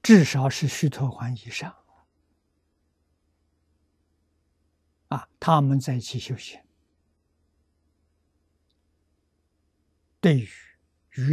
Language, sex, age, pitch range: Chinese, male, 60-79, 75-120 Hz